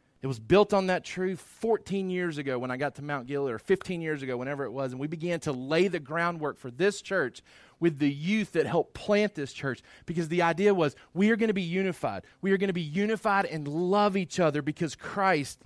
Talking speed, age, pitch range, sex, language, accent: 230 wpm, 30-49, 125-170 Hz, male, English, American